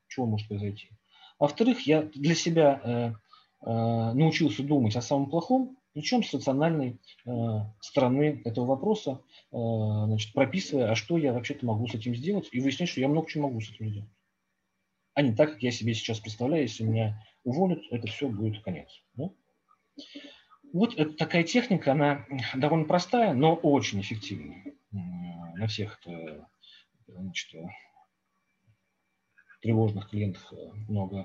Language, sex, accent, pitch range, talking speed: Russian, male, native, 105-150 Hz, 145 wpm